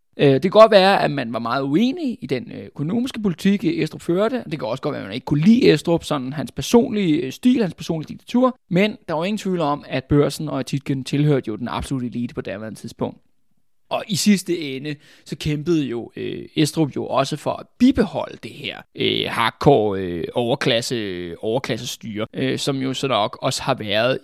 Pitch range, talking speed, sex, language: 135-170 Hz, 195 wpm, male, Danish